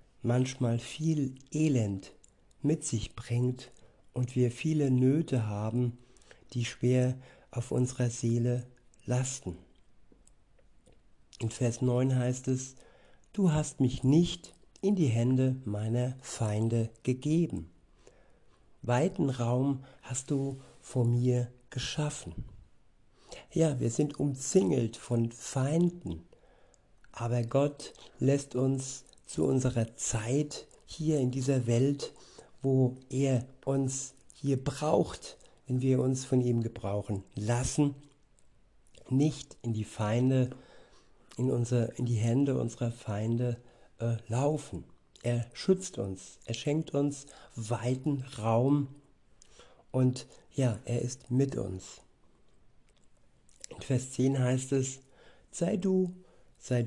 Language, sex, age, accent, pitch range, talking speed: German, male, 60-79, German, 120-135 Hz, 110 wpm